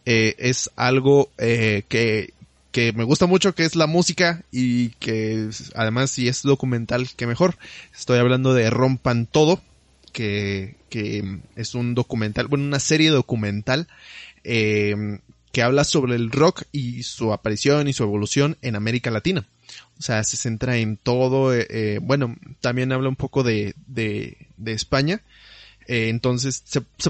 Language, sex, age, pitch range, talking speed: Spanish, male, 20-39, 115-155 Hz, 155 wpm